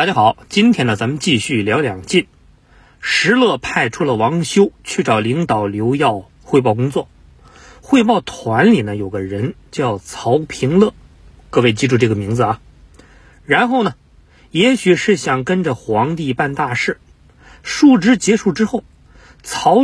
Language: Chinese